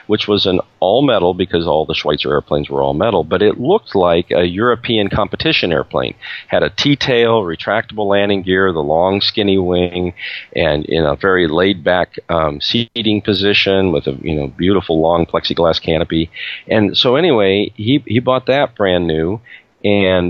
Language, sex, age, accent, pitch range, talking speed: English, male, 40-59, American, 90-115 Hz, 165 wpm